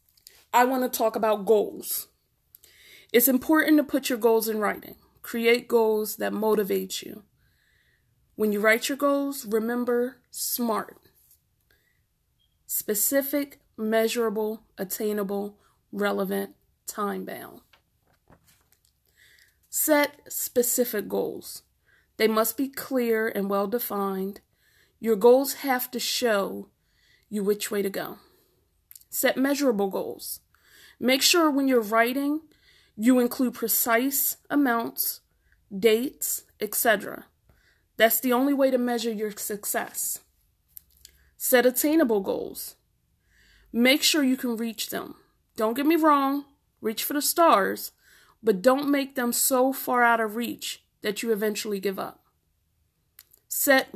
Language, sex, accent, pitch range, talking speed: English, female, American, 215-260 Hz, 115 wpm